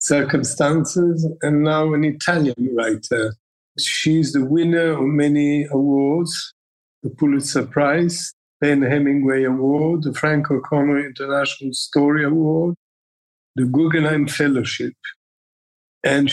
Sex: male